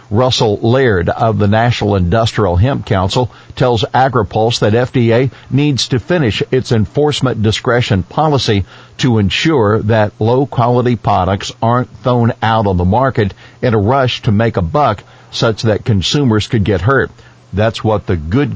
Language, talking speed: English, 150 wpm